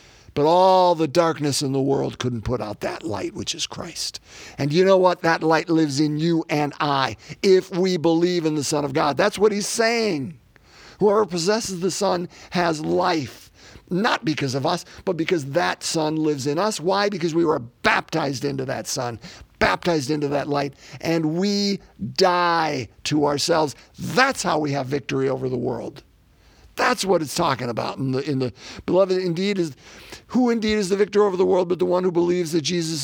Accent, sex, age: American, male, 50-69